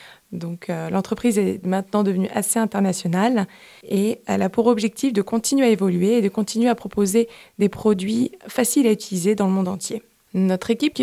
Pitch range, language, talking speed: 185-225 Hz, French, 185 wpm